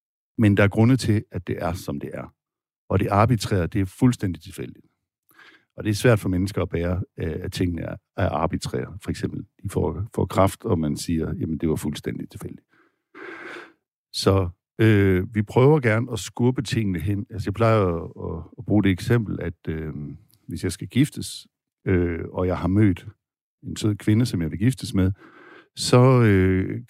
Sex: male